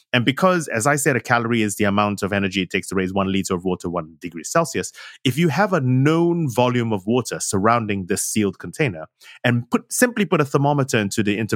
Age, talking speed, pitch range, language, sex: 30-49, 230 wpm, 105-150 Hz, English, male